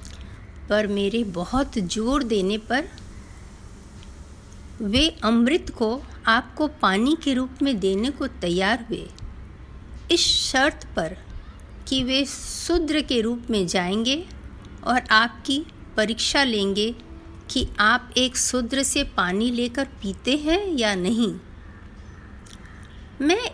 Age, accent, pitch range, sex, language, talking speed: 50-69, native, 175-270 Hz, female, Hindi, 110 wpm